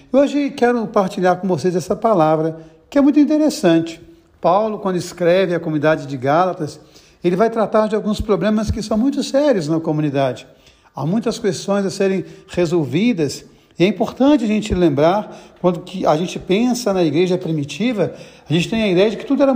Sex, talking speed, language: male, 175 wpm, Portuguese